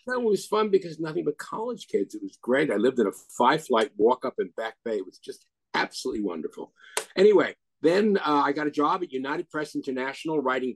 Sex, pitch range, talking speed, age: male, 115-150 Hz, 225 wpm, 50-69